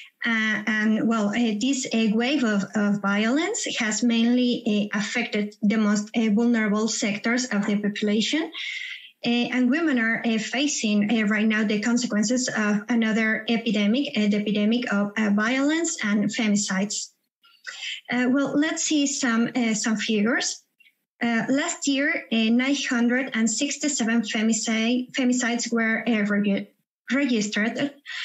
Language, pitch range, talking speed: English, 215-255 Hz, 130 wpm